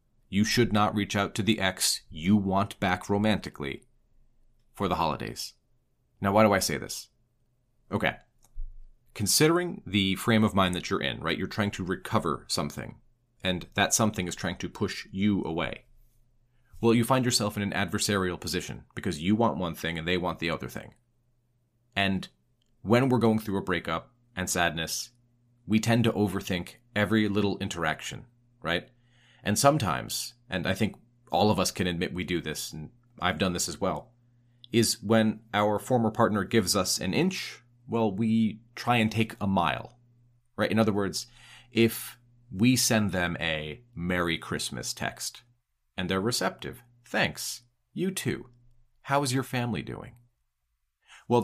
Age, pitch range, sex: 30-49, 95-120 Hz, male